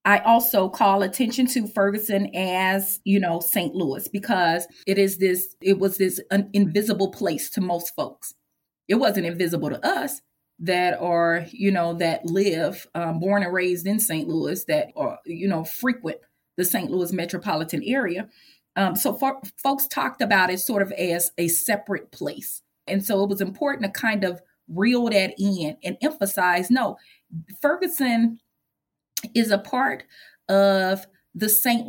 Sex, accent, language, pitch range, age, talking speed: female, American, English, 185-230 Hz, 30-49, 160 wpm